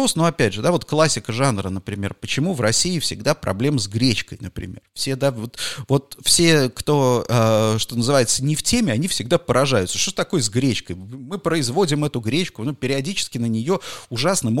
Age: 30-49